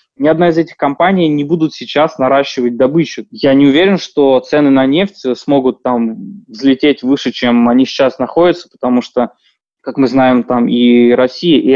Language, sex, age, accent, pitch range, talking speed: Russian, male, 20-39, native, 125-150 Hz, 175 wpm